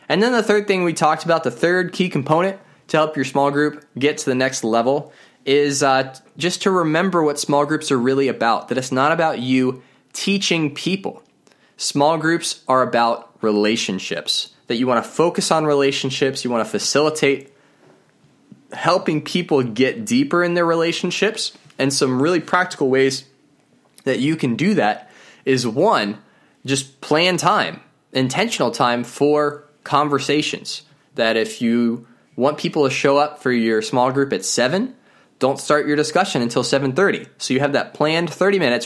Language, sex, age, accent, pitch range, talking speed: English, male, 20-39, American, 130-165 Hz, 170 wpm